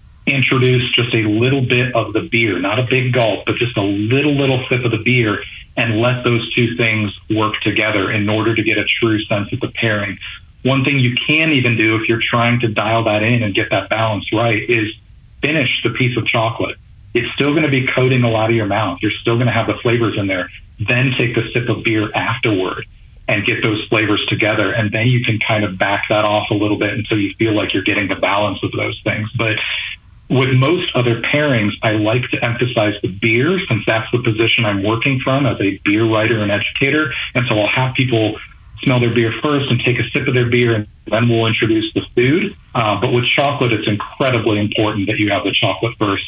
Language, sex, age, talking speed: English, male, 40-59, 230 wpm